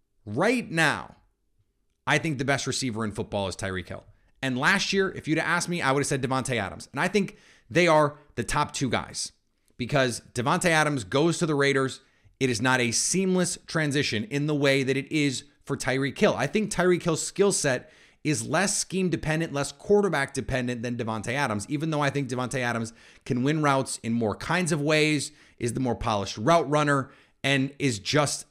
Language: English